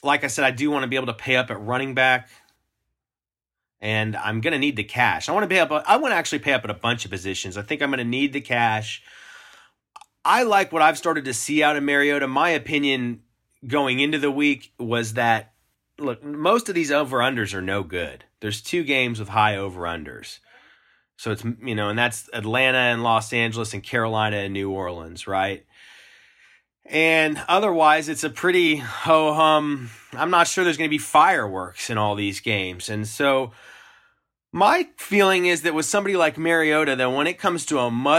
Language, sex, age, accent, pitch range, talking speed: English, male, 30-49, American, 115-160 Hz, 200 wpm